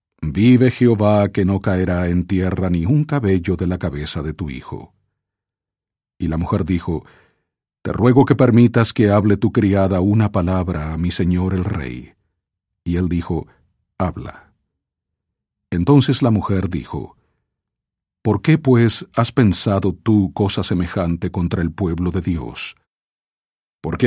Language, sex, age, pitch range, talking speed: English, male, 50-69, 90-120 Hz, 140 wpm